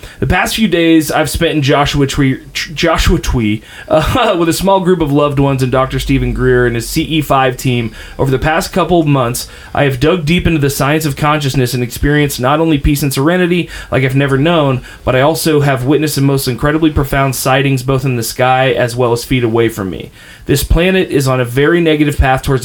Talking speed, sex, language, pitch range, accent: 215 wpm, male, English, 125-155 Hz, American